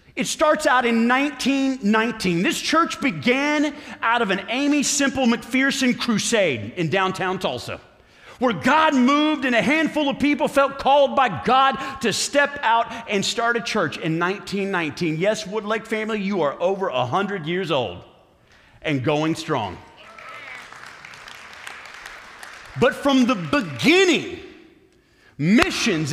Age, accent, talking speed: 40-59, American, 130 wpm